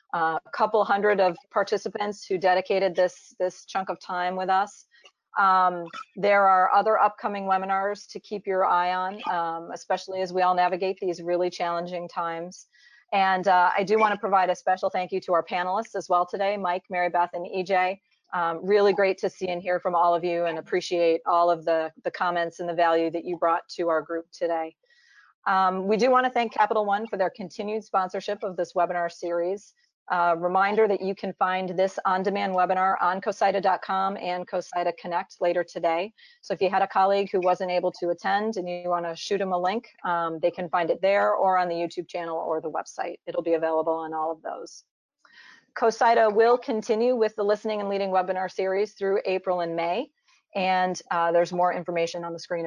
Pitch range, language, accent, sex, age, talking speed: 175-205 Hz, English, American, female, 40-59, 205 wpm